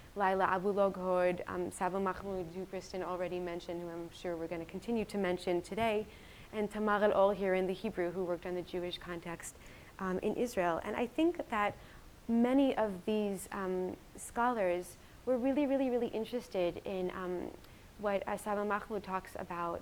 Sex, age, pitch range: female, 30-49, 180-210 Hz